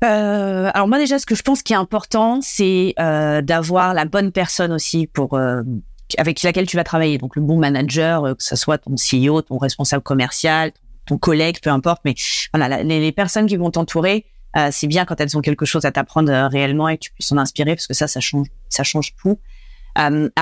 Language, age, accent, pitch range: French, 30-49, French, 145-185 Hz